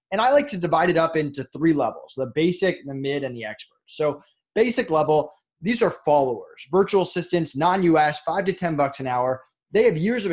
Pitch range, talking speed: 150-205 Hz, 210 wpm